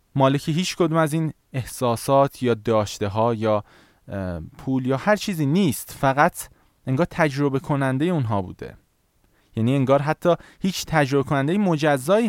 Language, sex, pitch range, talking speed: Persian, male, 120-165 Hz, 130 wpm